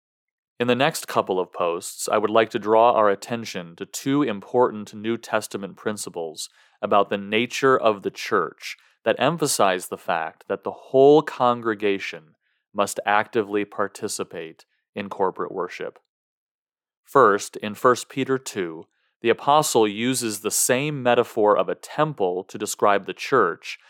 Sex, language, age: male, English, 30-49